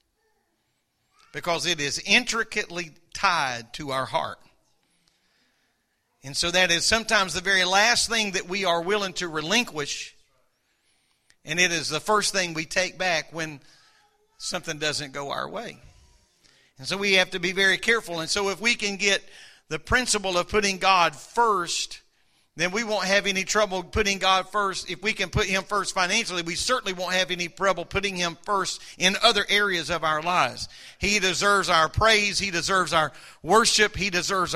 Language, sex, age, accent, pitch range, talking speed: English, male, 50-69, American, 170-210 Hz, 170 wpm